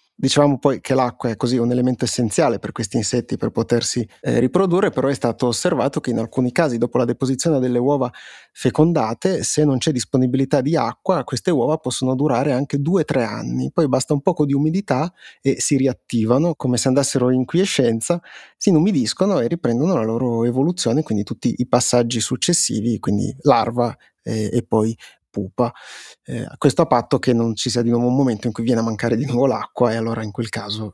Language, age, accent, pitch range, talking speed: Italian, 30-49, native, 120-140 Hz, 200 wpm